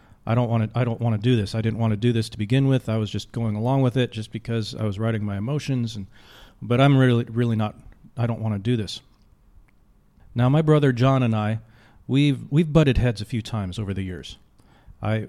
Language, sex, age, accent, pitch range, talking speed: English, male, 40-59, American, 105-125 Hz, 245 wpm